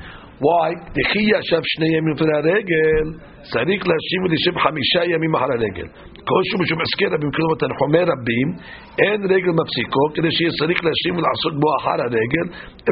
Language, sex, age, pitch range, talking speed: English, male, 60-79, 150-180 Hz, 70 wpm